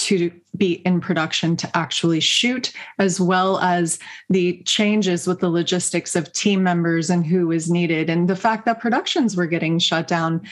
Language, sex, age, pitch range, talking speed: English, female, 30-49, 175-210 Hz, 175 wpm